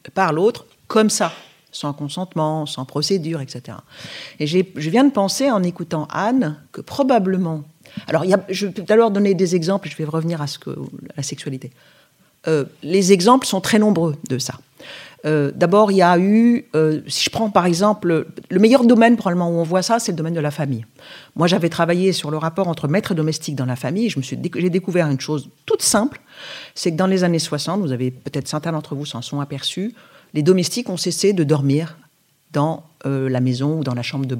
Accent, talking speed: French, 225 wpm